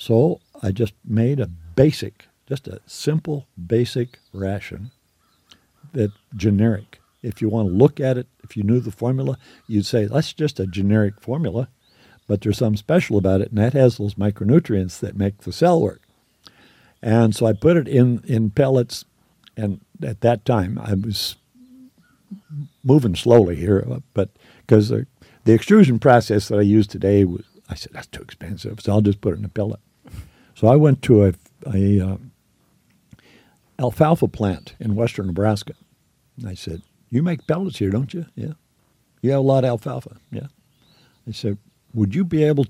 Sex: male